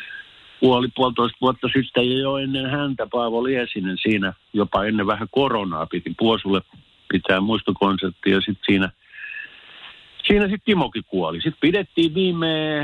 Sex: male